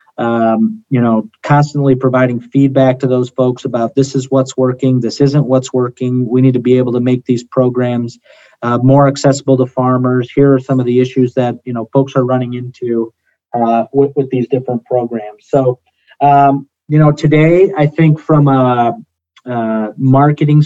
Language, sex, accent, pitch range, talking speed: English, male, American, 125-140 Hz, 180 wpm